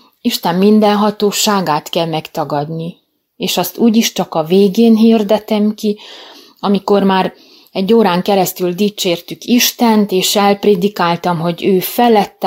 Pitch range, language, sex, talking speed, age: 180-215 Hz, English, female, 120 wpm, 30-49